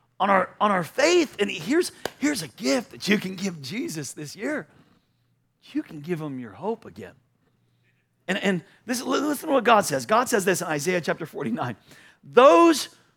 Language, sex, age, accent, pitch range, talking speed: English, male, 40-59, American, 200-290 Hz, 180 wpm